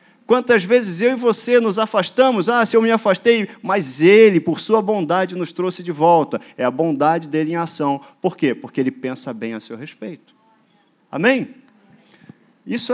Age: 40-59